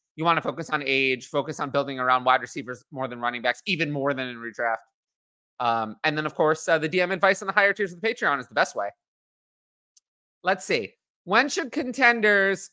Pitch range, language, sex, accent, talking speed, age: 140-215 Hz, English, male, American, 215 wpm, 30-49